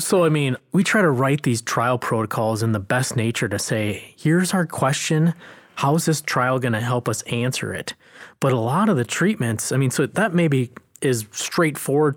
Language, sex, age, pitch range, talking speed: English, male, 20-39, 120-145 Hz, 205 wpm